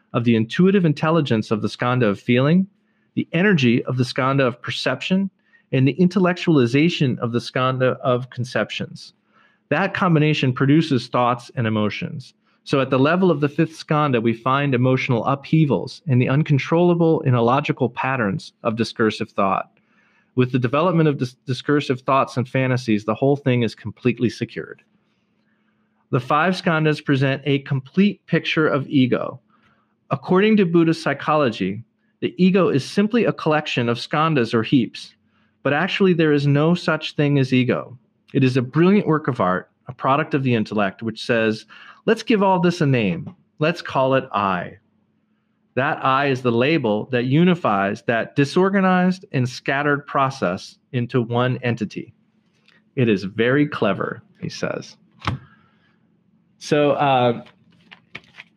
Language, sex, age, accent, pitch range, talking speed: English, male, 40-59, American, 120-165 Hz, 150 wpm